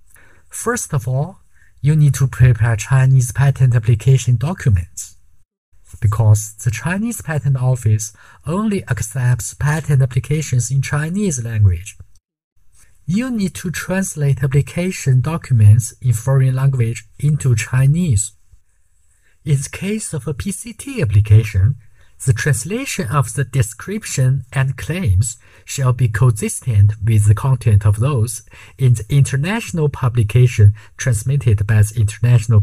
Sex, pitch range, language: male, 105-140 Hz, Chinese